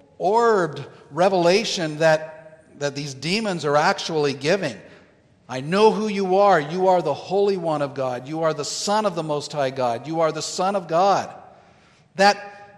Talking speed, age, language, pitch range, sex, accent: 175 wpm, 50-69, English, 150-190 Hz, male, American